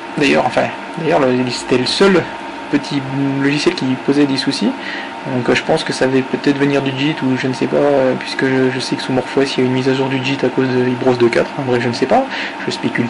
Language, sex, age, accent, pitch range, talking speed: French, male, 20-39, French, 130-145 Hz, 250 wpm